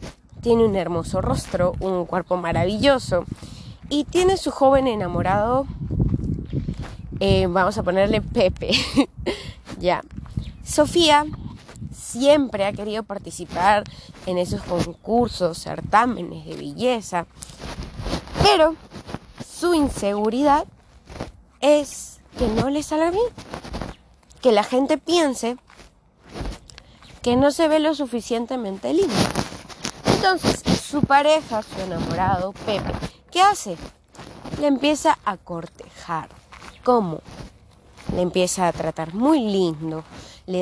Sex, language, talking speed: female, Spanish, 105 wpm